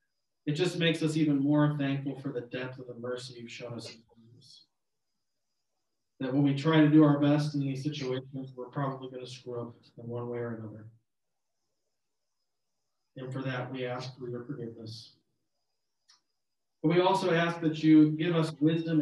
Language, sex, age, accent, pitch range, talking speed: English, male, 40-59, American, 120-145 Hz, 175 wpm